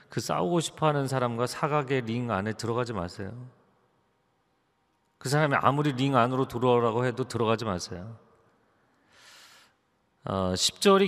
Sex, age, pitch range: male, 40-59, 105-135 Hz